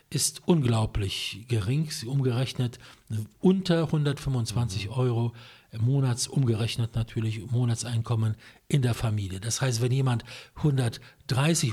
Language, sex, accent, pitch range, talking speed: English, male, German, 115-145 Hz, 95 wpm